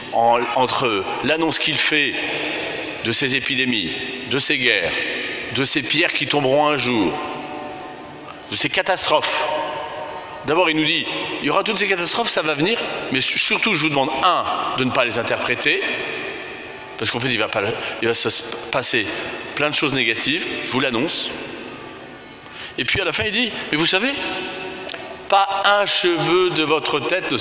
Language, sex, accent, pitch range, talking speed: French, male, French, 145-195 Hz, 170 wpm